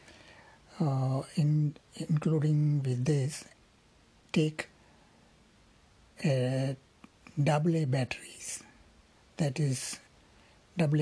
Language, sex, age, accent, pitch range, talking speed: Tamil, male, 60-79, native, 125-145 Hz, 65 wpm